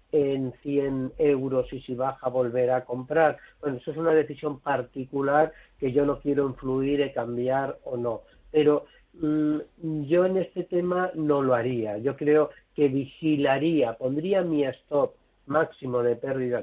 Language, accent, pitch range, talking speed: Spanish, Spanish, 130-165 Hz, 155 wpm